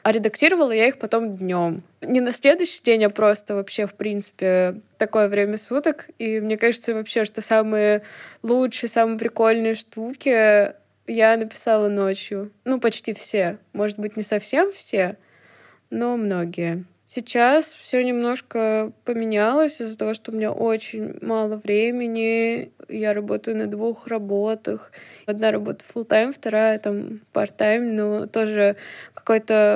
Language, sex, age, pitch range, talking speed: Russian, female, 20-39, 205-230 Hz, 135 wpm